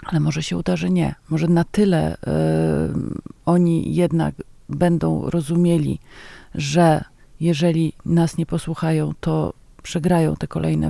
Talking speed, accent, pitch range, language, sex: 120 wpm, native, 155-175 Hz, Polish, female